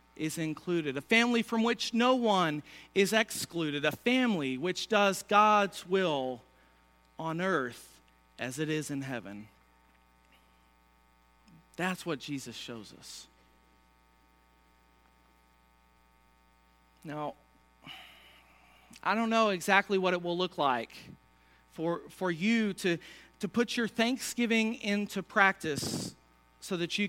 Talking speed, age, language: 115 wpm, 40-59, English